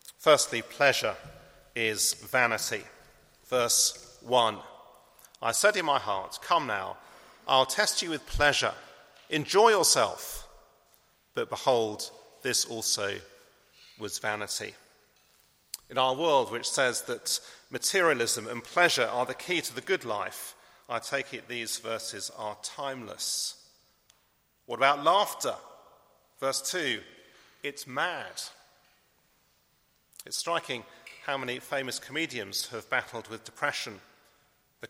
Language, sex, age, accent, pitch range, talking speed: English, male, 40-59, British, 120-150 Hz, 115 wpm